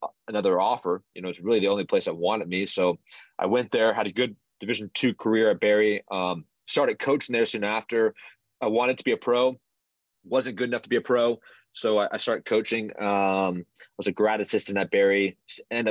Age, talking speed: 20-39, 210 wpm